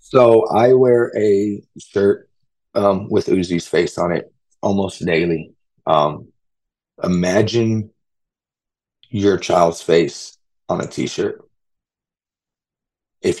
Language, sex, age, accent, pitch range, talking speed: English, male, 30-49, American, 90-110 Hz, 100 wpm